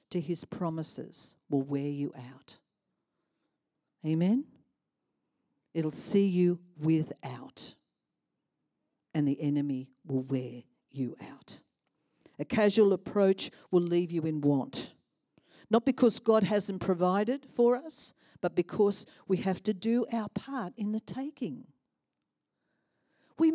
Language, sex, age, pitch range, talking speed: English, female, 50-69, 180-275 Hz, 115 wpm